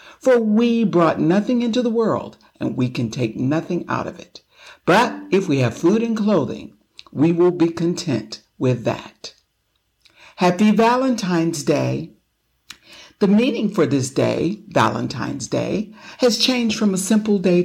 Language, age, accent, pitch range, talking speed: English, 60-79, American, 145-205 Hz, 150 wpm